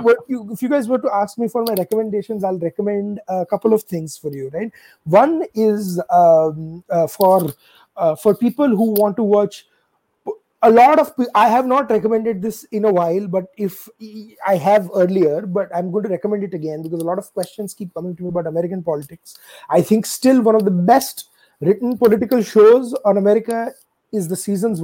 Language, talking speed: English, 195 wpm